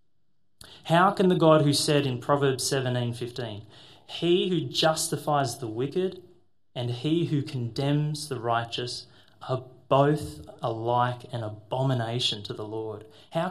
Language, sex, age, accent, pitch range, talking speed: English, male, 30-49, Australian, 110-145 Hz, 135 wpm